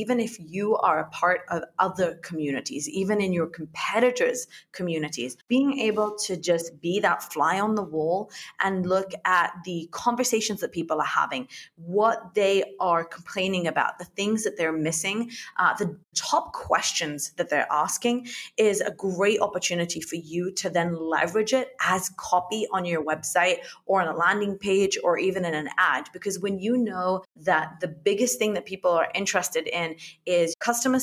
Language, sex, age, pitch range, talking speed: English, female, 30-49, 170-210 Hz, 175 wpm